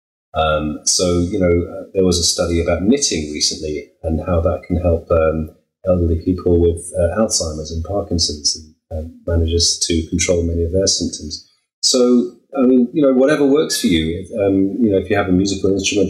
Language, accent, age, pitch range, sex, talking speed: English, British, 30-49, 85-110 Hz, male, 200 wpm